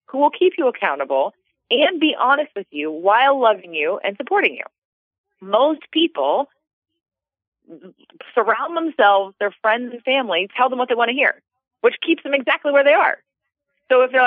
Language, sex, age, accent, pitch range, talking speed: English, female, 30-49, American, 195-300 Hz, 175 wpm